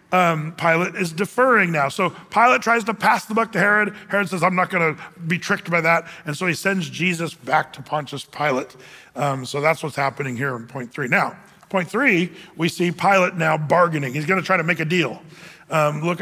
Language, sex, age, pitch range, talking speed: English, male, 40-59, 165-215 Hz, 215 wpm